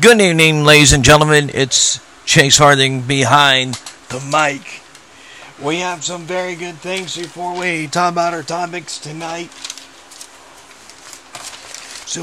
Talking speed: 125 wpm